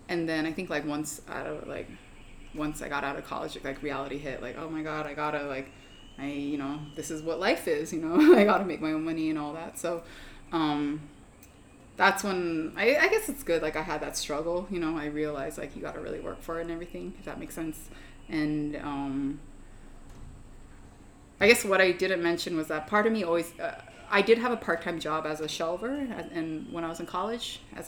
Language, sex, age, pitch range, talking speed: English, female, 20-39, 155-195 Hz, 230 wpm